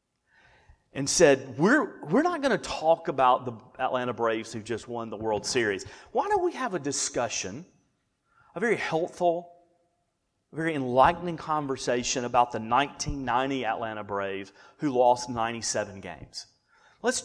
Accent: American